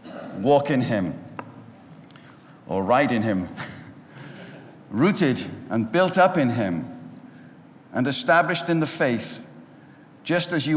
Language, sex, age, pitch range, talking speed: English, male, 60-79, 120-155 Hz, 115 wpm